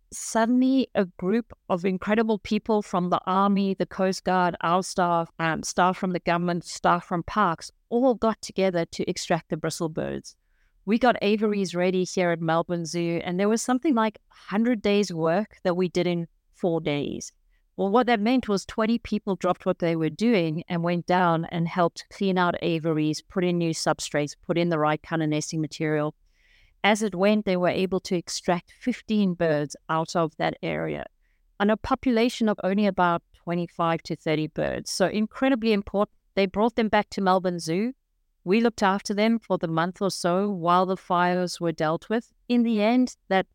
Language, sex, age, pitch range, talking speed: English, female, 50-69, 170-210 Hz, 190 wpm